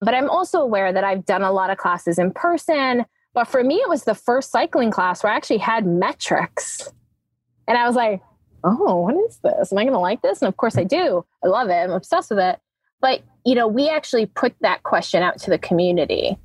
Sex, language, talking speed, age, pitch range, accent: female, English, 235 wpm, 20-39, 185-245 Hz, American